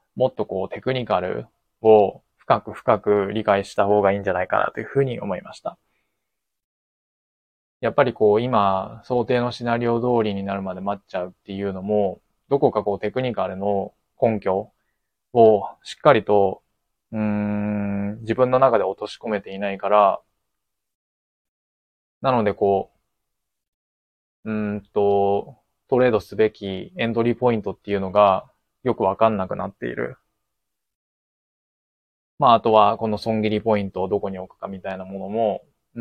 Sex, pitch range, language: male, 95-115 Hz, Japanese